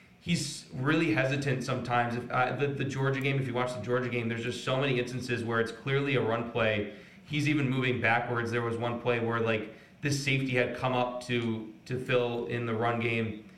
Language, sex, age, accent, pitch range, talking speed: English, male, 30-49, American, 115-135 Hz, 215 wpm